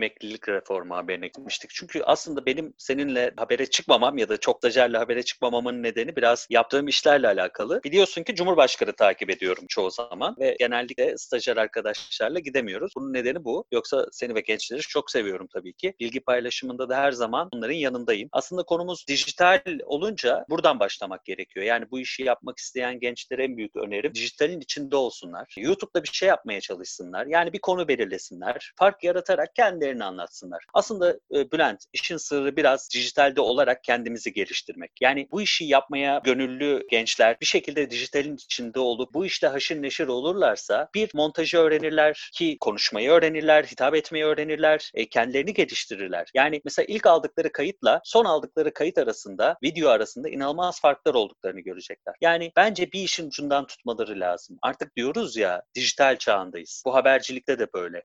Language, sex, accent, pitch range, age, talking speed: Turkish, male, native, 130-180 Hz, 40-59, 155 wpm